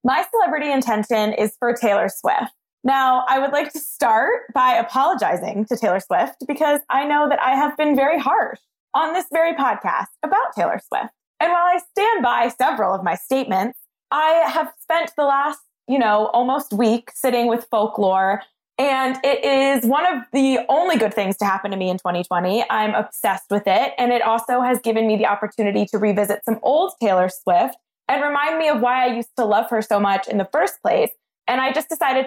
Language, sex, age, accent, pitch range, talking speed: English, female, 20-39, American, 210-275 Hz, 200 wpm